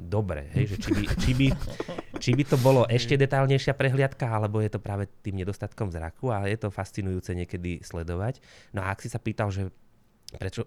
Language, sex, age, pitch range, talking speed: Slovak, male, 20-39, 85-105 Hz, 195 wpm